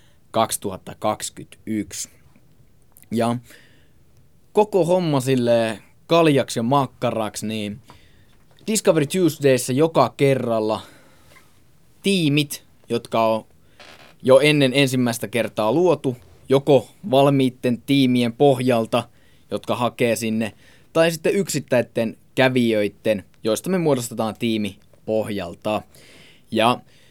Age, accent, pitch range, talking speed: 20-39, native, 110-145 Hz, 85 wpm